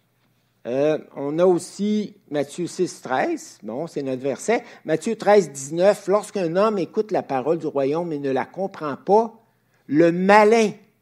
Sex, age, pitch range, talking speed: male, 60-79, 140-185 Hz, 150 wpm